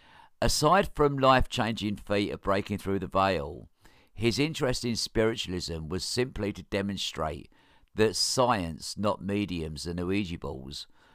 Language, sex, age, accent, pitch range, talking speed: English, male, 50-69, British, 90-115 Hz, 130 wpm